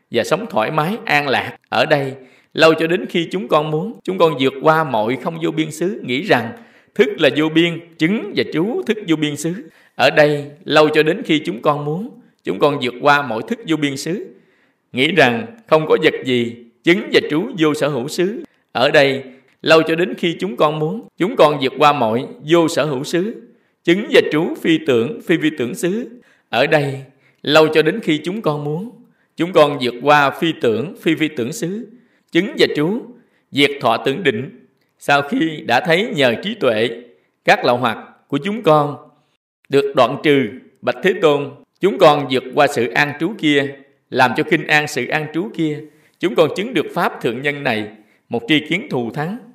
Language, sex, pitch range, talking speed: Vietnamese, male, 145-175 Hz, 205 wpm